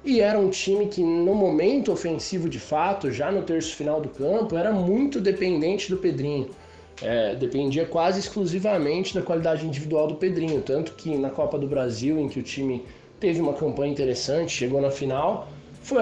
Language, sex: Portuguese, male